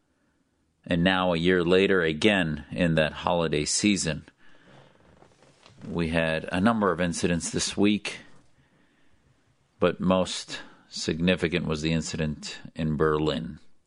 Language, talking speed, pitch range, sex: English, 110 wpm, 80-95 Hz, male